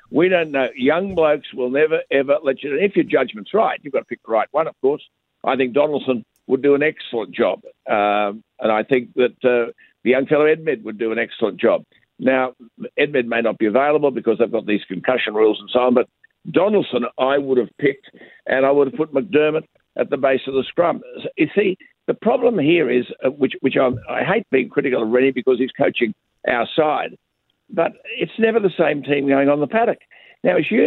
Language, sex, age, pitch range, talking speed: English, male, 60-79, 130-180 Hz, 220 wpm